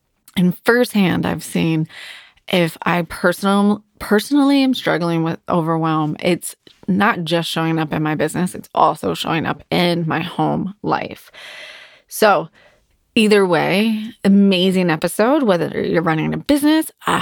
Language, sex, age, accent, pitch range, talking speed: English, female, 20-39, American, 165-195 Hz, 135 wpm